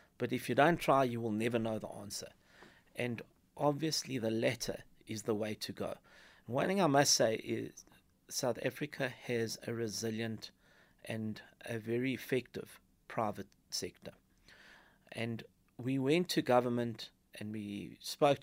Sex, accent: male, South African